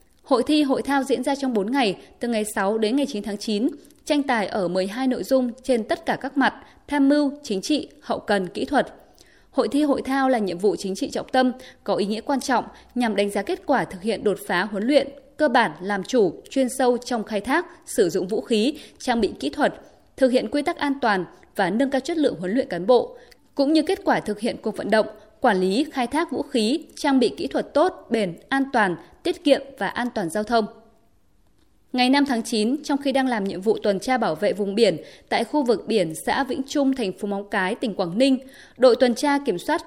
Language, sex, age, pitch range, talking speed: Vietnamese, female, 20-39, 215-280 Hz, 240 wpm